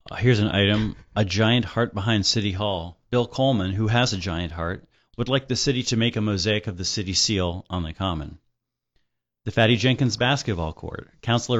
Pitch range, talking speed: 85-115 Hz, 190 wpm